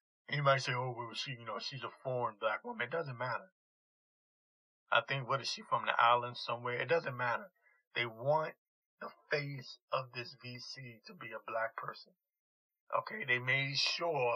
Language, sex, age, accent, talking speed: English, male, 30-49, American, 185 wpm